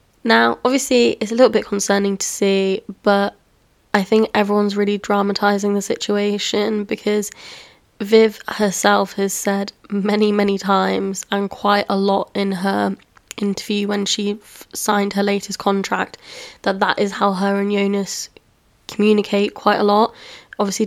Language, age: English, 20-39